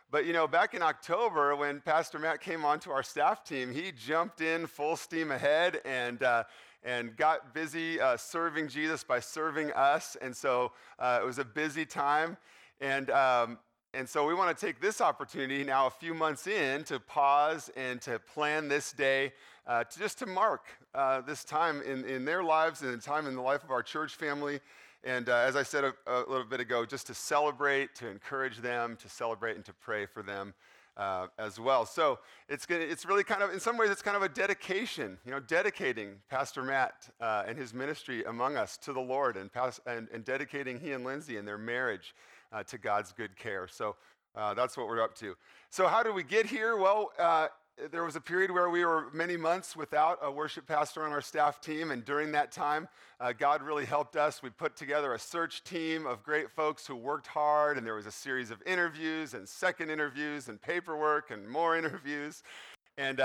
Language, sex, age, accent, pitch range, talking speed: English, male, 40-59, American, 130-160 Hz, 210 wpm